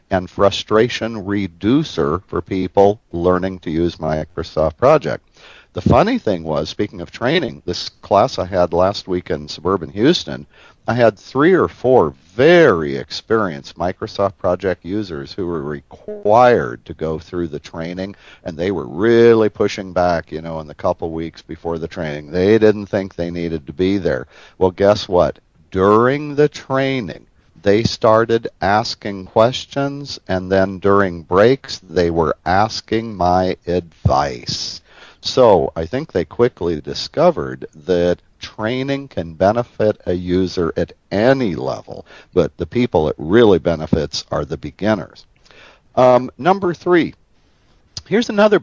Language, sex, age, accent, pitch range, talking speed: English, male, 50-69, American, 85-115 Hz, 145 wpm